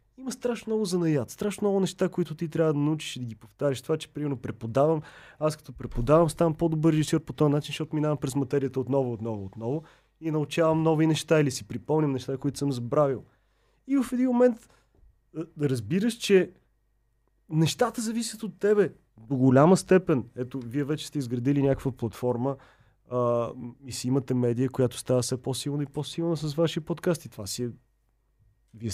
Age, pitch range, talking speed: 30-49, 120-155 Hz, 175 wpm